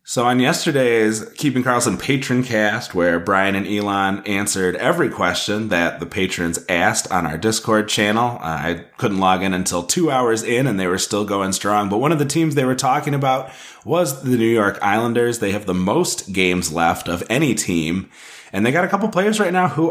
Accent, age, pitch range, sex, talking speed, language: American, 30-49, 95-125 Hz, male, 210 wpm, English